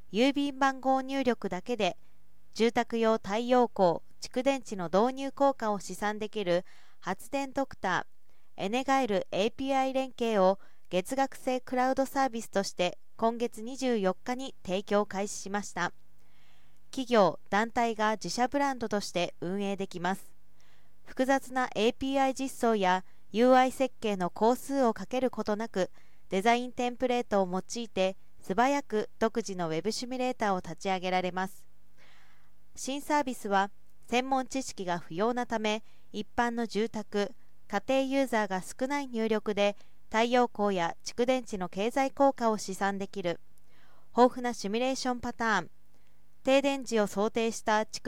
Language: Japanese